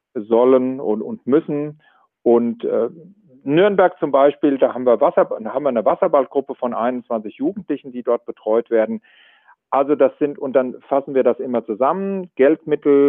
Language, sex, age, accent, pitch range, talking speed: German, male, 50-69, German, 115-145 Hz, 165 wpm